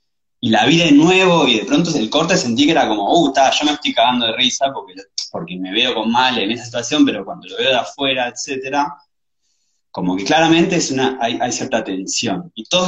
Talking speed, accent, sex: 230 wpm, Argentinian, male